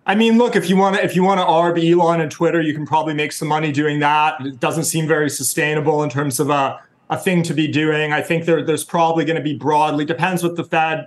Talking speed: 260 wpm